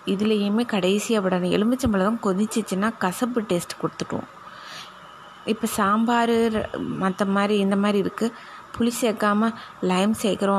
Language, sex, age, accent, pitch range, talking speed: Tamil, female, 20-39, native, 180-225 Hz, 110 wpm